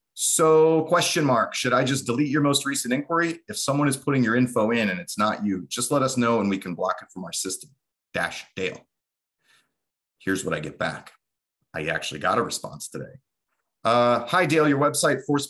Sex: male